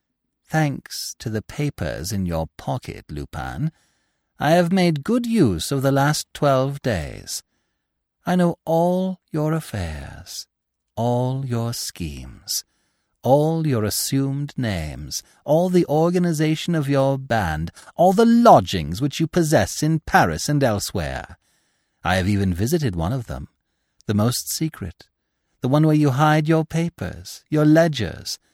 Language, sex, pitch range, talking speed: English, male, 100-160 Hz, 135 wpm